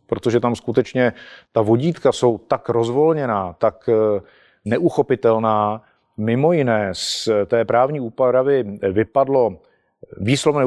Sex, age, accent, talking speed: male, 40-59, native, 100 wpm